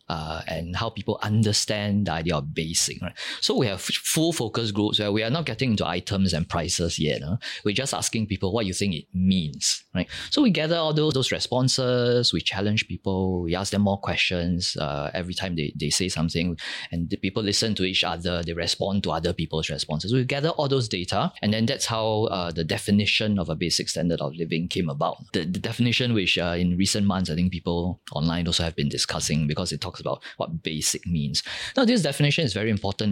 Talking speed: 220 wpm